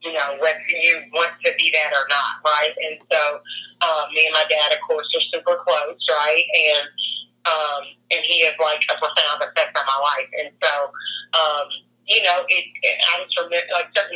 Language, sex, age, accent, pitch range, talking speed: English, female, 40-59, American, 150-215 Hz, 220 wpm